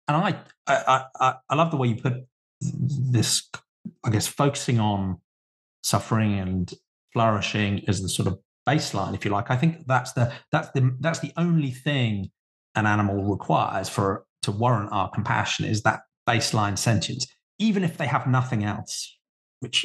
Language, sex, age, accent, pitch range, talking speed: English, male, 30-49, British, 105-135 Hz, 165 wpm